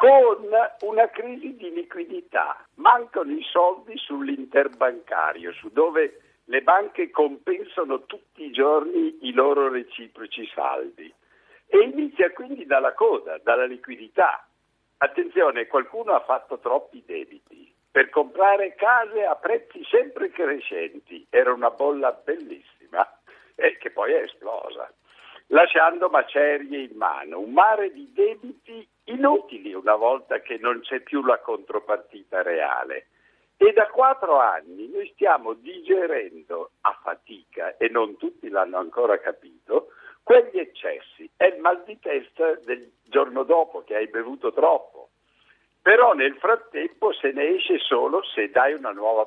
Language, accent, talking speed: Italian, native, 130 wpm